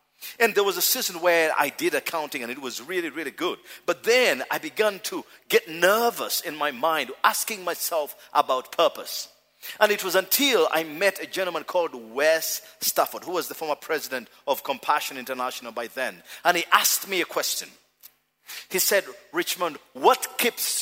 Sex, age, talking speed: male, 50-69, 175 wpm